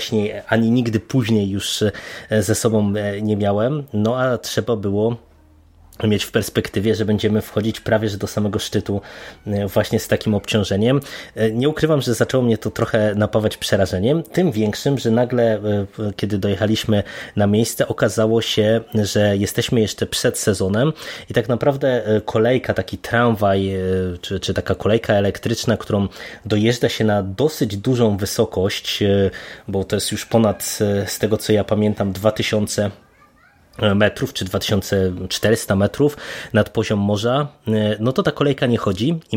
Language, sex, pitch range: Polish, male, 100-115 Hz